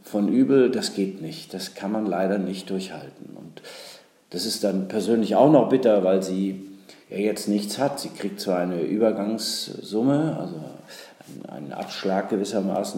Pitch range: 95-115 Hz